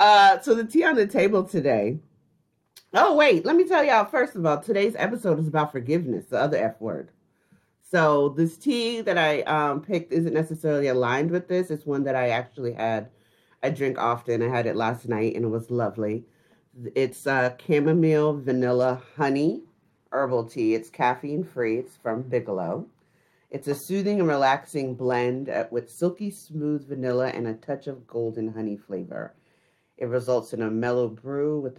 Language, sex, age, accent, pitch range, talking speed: English, female, 30-49, American, 120-165 Hz, 175 wpm